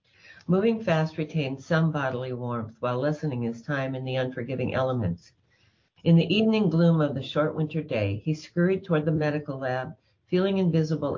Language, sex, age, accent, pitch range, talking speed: English, female, 50-69, American, 125-165 Hz, 165 wpm